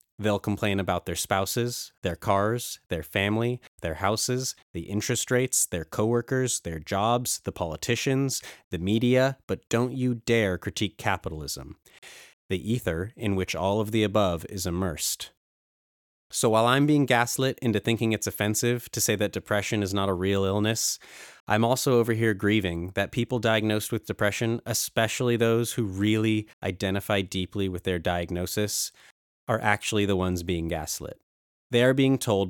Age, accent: 30-49, American